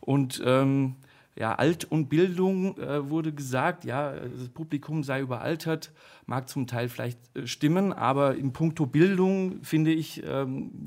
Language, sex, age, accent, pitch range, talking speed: German, male, 40-59, German, 130-155 Hz, 150 wpm